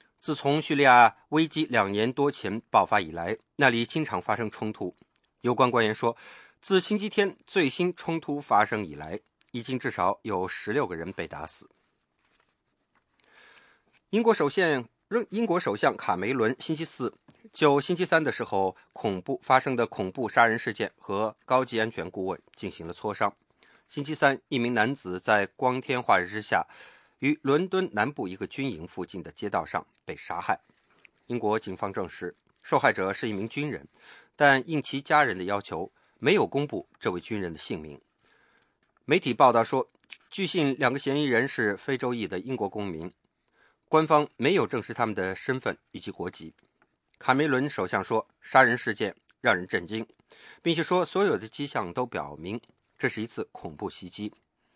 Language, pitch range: English, 110-150 Hz